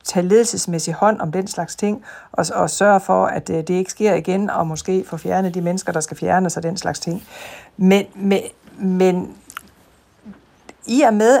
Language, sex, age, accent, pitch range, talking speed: Danish, female, 60-79, native, 170-215 Hz, 185 wpm